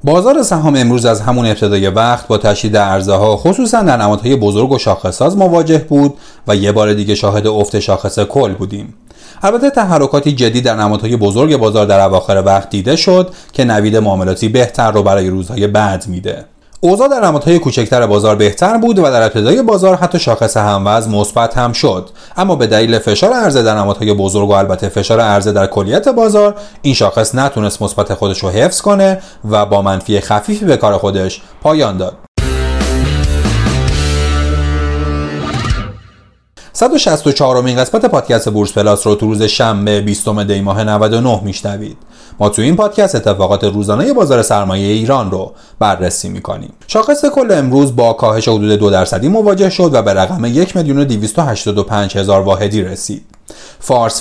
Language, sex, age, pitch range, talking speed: Persian, male, 30-49, 100-135 Hz, 160 wpm